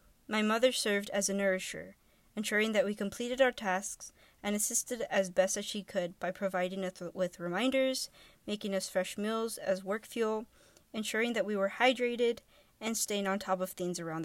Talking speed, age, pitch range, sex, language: 180 wpm, 20-39, 190-225 Hz, female, English